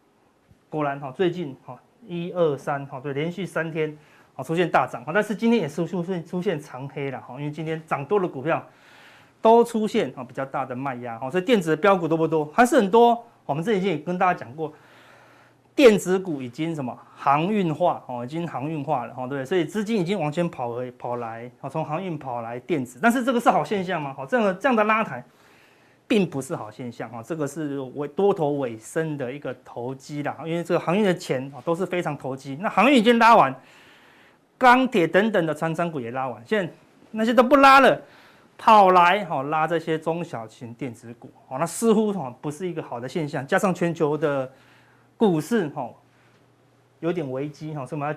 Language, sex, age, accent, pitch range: Chinese, male, 30-49, native, 135-195 Hz